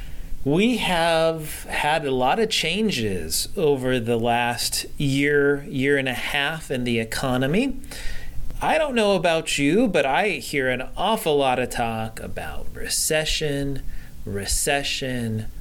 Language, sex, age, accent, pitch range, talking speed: English, male, 30-49, American, 130-165 Hz, 130 wpm